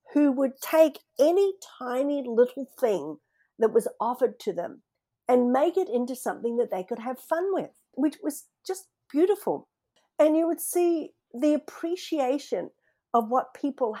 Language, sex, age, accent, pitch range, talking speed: English, female, 50-69, Australian, 200-280 Hz, 155 wpm